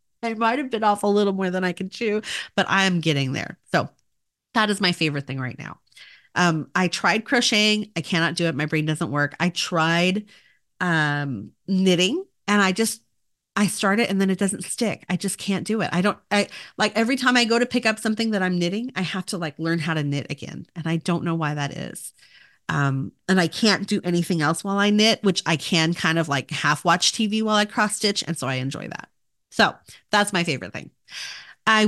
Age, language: 30-49, English